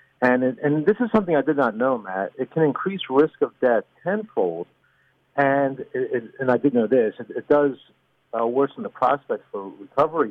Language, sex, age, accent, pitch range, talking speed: English, male, 50-69, American, 115-150 Hz, 205 wpm